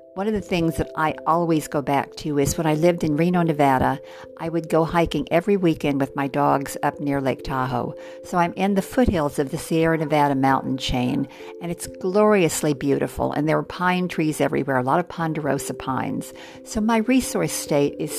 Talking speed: 200 wpm